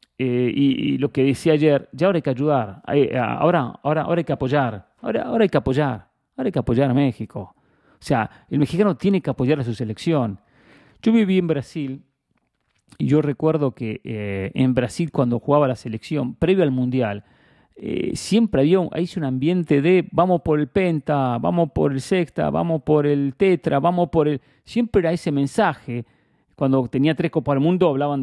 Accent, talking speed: Argentinian, 190 wpm